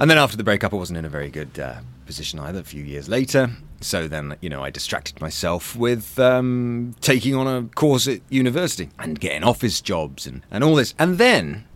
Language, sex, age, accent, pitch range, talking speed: English, male, 30-49, British, 85-115 Hz, 220 wpm